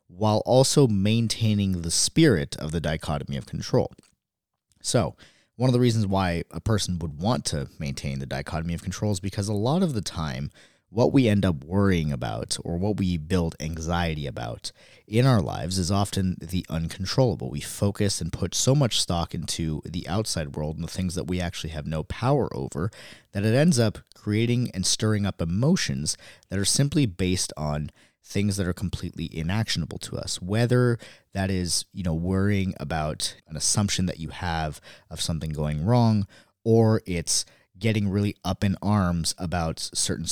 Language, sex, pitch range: English, male, 80-105 Hz